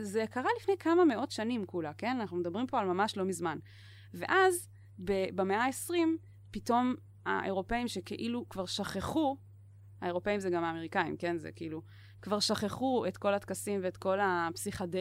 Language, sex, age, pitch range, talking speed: Hebrew, female, 20-39, 165-215 Hz, 155 wpm